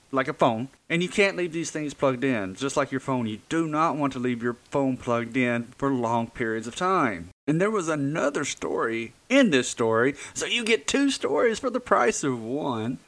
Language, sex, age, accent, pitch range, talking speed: English, male, 30-49, American, 120-165 Hz, 220 wpm